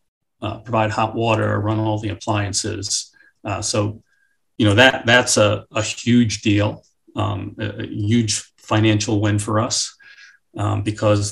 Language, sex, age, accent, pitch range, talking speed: English, male, 40-59, American, 105-115 Hz, 150 wpm